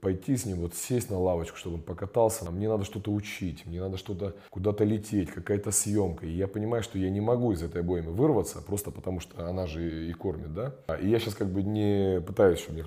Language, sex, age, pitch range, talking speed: Russian, male, 30-49, 85-105 Hz, 230 wpm